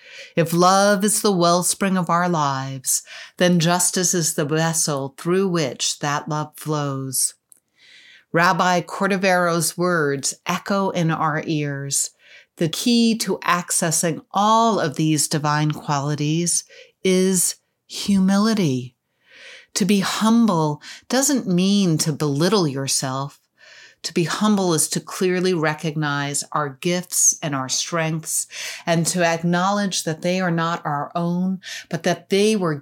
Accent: American